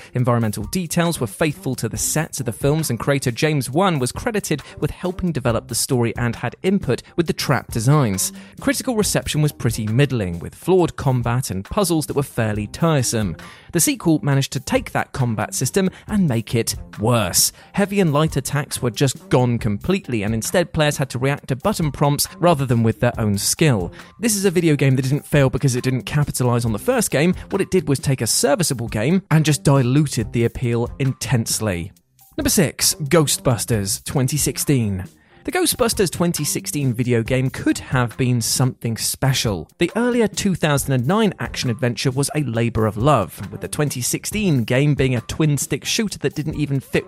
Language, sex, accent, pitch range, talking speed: English, male, British, 120-160 Hz, 180 wpm